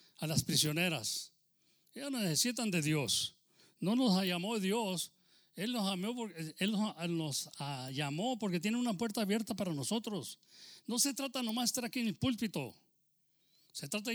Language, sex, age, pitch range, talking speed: English, male, 40-59, 155-215 Hz, 155 wpm